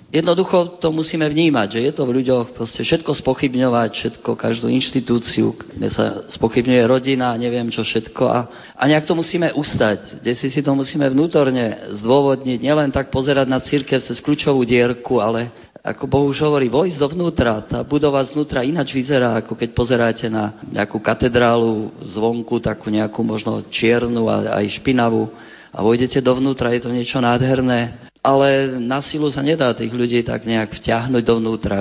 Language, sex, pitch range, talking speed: Slovak, male, 115-135 Hz, 160 wpm